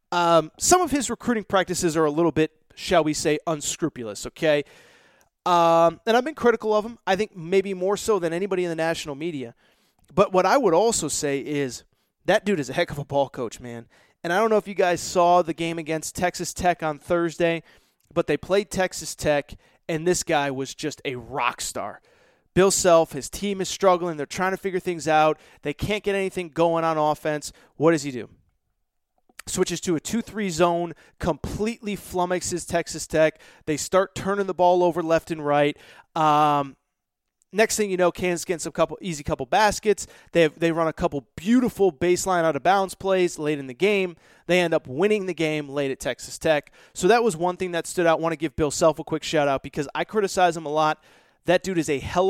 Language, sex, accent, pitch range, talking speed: English, male, American, 155-190 Hz, 210 wpm